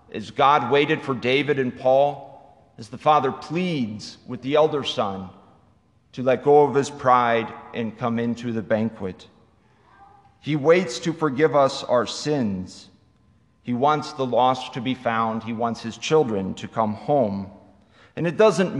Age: 40-59